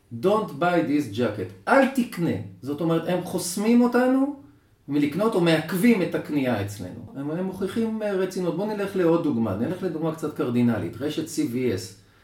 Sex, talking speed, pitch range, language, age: male, 145 wpm, 115-180 Hz, Hebrew, 40-59